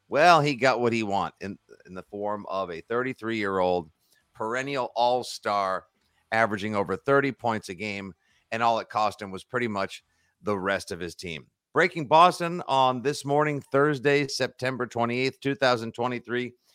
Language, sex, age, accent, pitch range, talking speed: English, male, 50-69, American, 100-145 Hz, 165 wpm